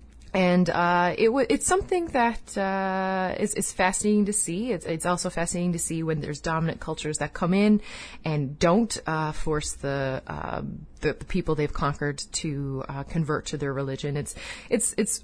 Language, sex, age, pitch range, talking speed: English, female, 30-49, 145-190 Hz, 180 wpm